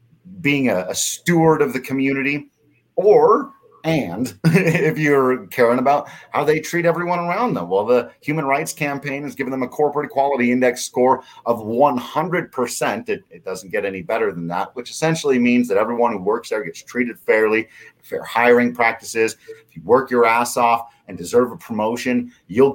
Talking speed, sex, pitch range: 175 wpm, male, 115-155 Hz